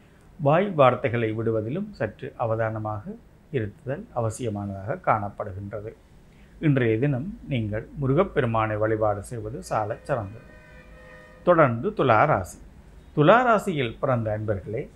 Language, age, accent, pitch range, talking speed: Tamil, 50-69, native, 105-145 Hz, 85 wpm